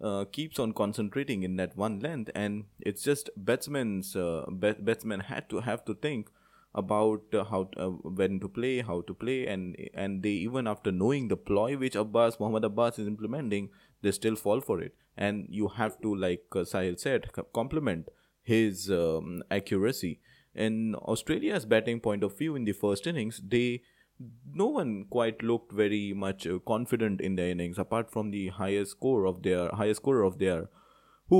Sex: male